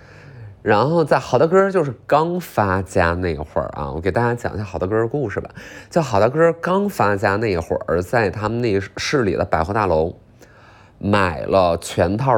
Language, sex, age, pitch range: Chinese, male, 20-39, 100-135 Hz